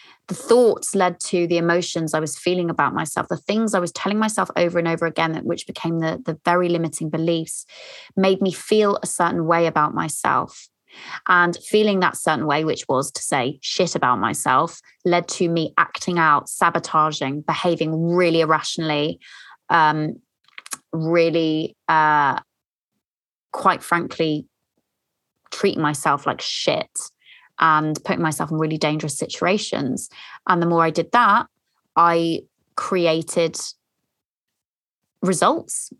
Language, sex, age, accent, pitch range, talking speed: English, female, 20-39, British, 165-190 Hz, 135 wpm